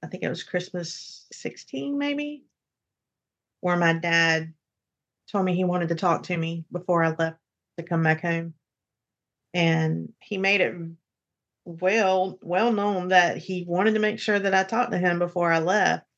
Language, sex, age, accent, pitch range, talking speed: English, female, 40-59, American, 160-185 Hz, 170 wpm